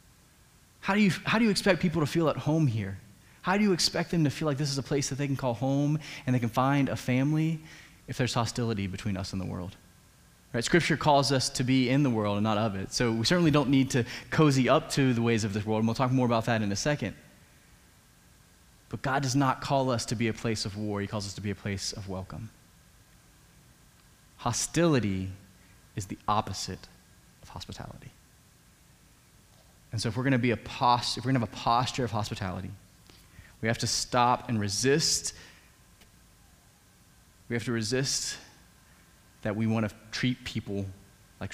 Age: 20-39